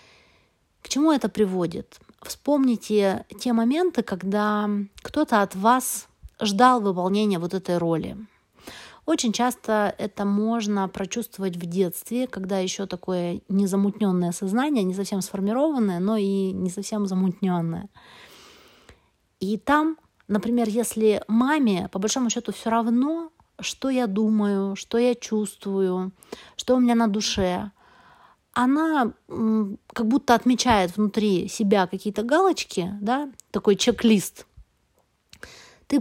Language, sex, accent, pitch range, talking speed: Russian, female, native, 195-250 Hz, 115 wpm